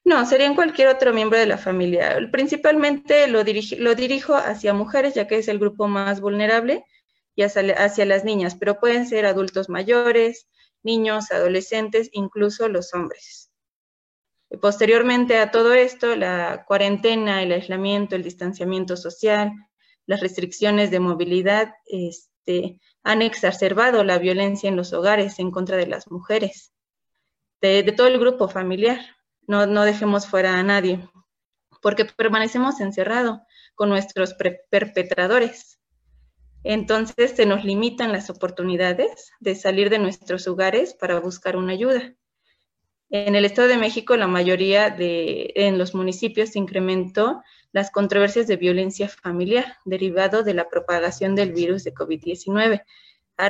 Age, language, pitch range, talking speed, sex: 20-39, Spanish, 185-225 Hz, 140 wpm, female